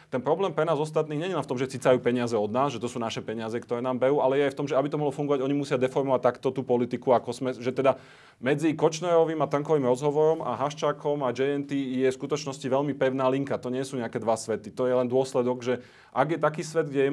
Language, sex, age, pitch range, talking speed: Slovak, male, 30-49, 120-140 Hz, 265 wpm